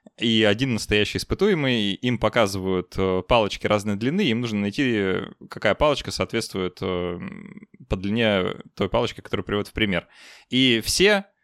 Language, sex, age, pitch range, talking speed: Russian, male, 20-39, 100-135 Hz, 130 wpm